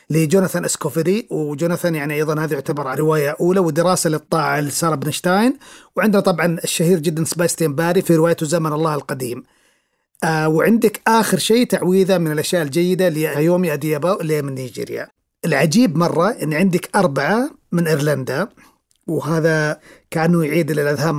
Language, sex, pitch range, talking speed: Arabic, male, 150-180 Hz, 140 wpm